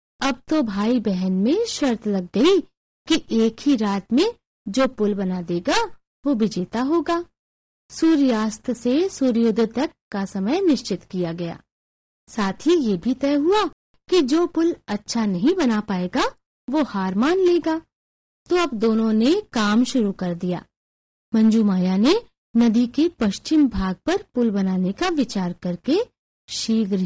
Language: Hindi